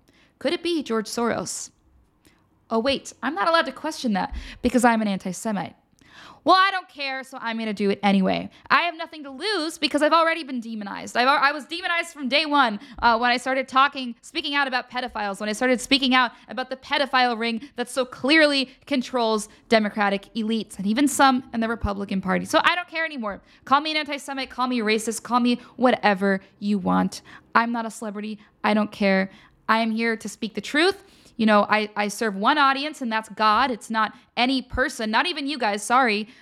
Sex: female